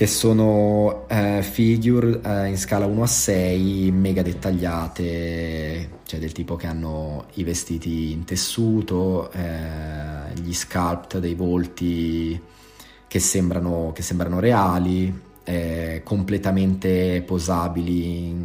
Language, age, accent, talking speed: Italian, 20-39, native, 105 wpm